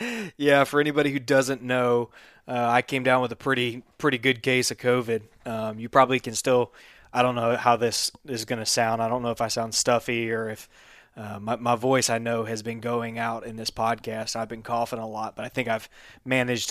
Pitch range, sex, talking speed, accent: 115-130 Hz, male, 220 wpm, American